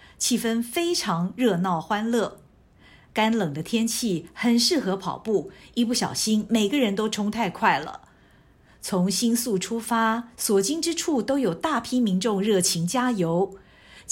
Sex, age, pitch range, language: female, 50-69, 180-240 Hz, Chinese